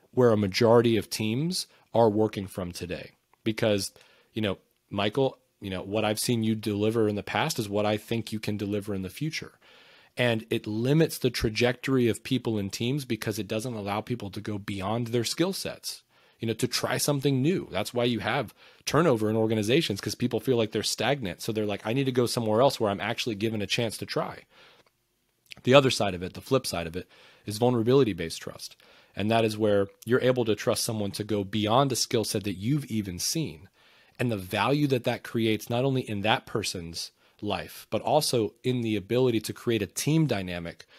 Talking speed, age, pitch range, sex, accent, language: 210 wpm, 30-49, 100-120 Hz, male, American, English